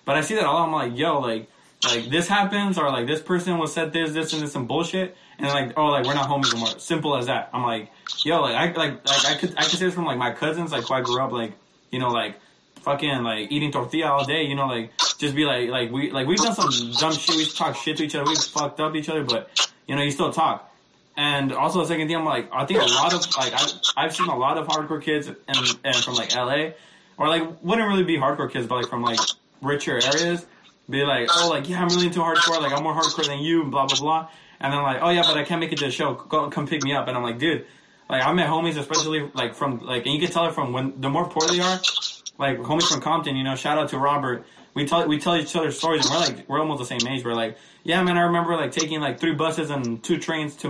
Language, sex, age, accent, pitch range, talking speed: English, male, 20-39, American, 135-165 Hz, 280 wpm